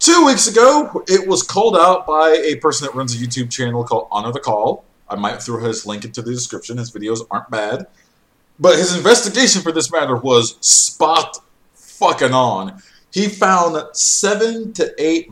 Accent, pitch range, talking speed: American, 125-200 Hz, 170 wpm